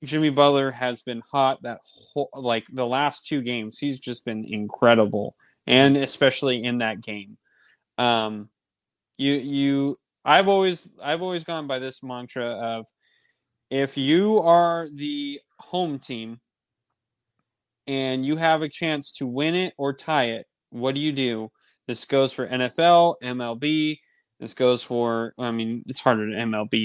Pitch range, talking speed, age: 120-145 Hz, 150 wpm, 20-39